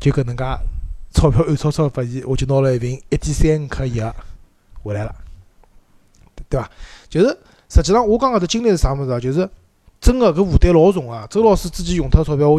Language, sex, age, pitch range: Chinese, male, 20-39, 115-175 Hz